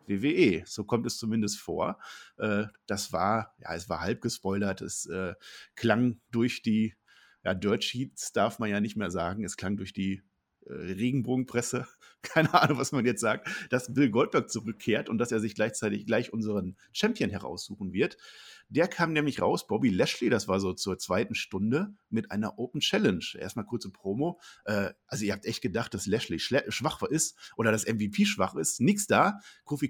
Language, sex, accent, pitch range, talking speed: German, male, German, 100-135 Hz, 175 wpm